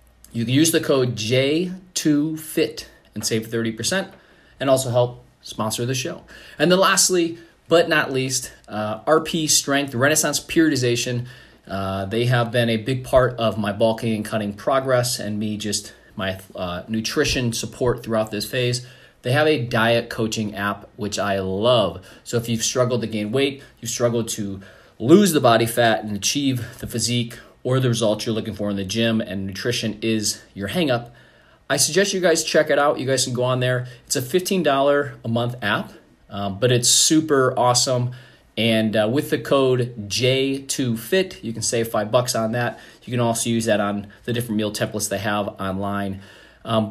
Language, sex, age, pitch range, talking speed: English, male, 30-49, 110-135 Hz, 180 wpm